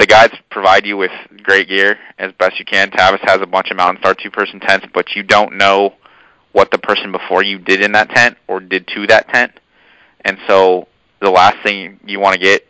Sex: male